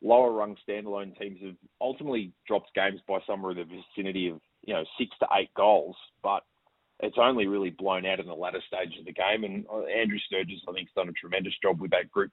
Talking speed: 220 wpm